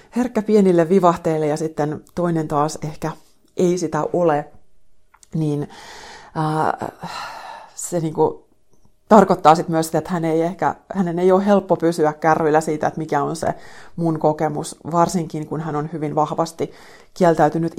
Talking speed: 140 wpm